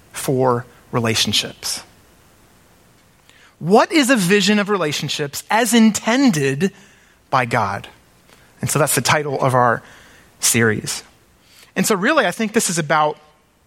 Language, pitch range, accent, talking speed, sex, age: English, 145-210 Hz, American, 125 wpm, male, 30-49